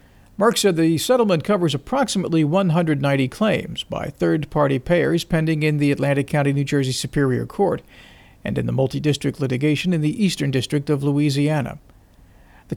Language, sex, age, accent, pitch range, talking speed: English, male, 50-69, American, 135-175 Hz, 150 wpm